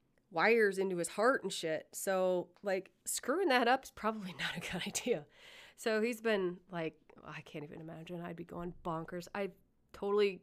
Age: 30-49